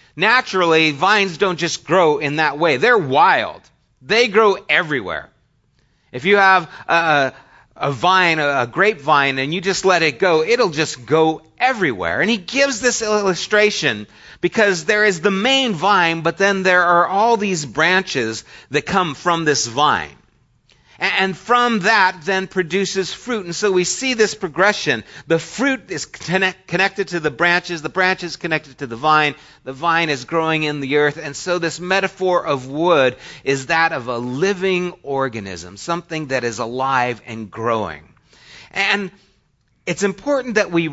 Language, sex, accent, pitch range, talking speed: English, male, American, 145-195 Hz, 165 wpm